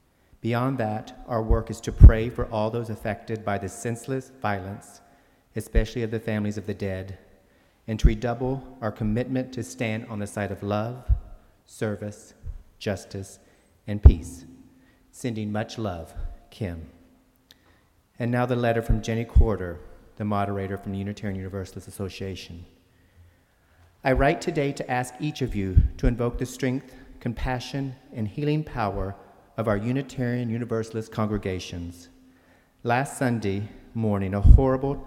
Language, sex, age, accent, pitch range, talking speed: English, male, 40-59, American, 95-120 Hz, 140 wpm